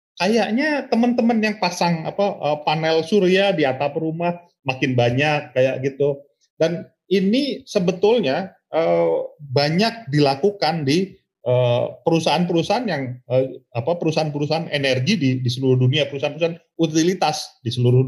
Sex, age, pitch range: male, 30-49, 130-175 Hz